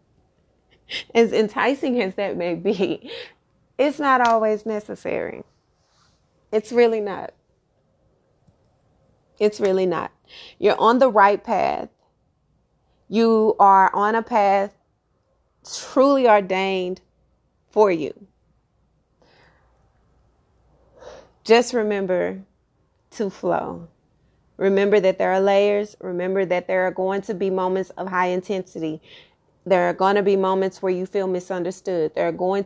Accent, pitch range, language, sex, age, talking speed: American, 180-210 Hz, English, female, 30-49, 115 wpm